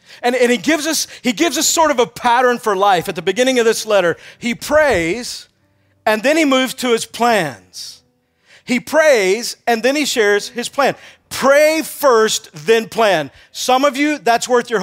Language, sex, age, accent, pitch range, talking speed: English, male, 50-69, American, 205-255 Hz, 180 wpm